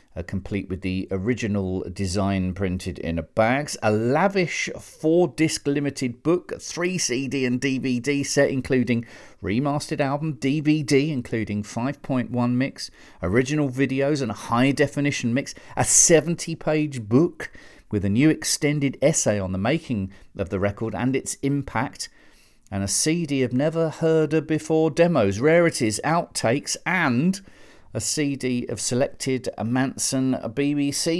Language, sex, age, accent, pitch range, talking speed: English, male, 40-59, British, 105-150 Hz, 130 wpm